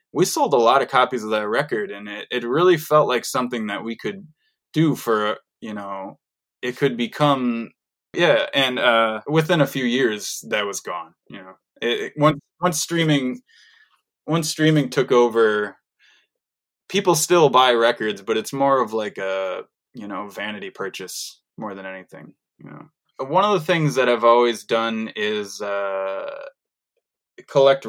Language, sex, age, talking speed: English, male, 20-39, 165 wpm